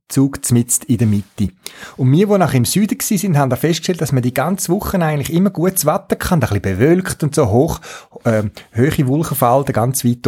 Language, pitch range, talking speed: German, 110-150 Hz, 210 wpm